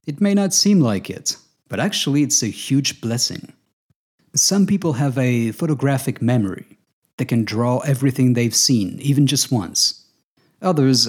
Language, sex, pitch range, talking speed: English, male, 115-145 Hz, 150 wpm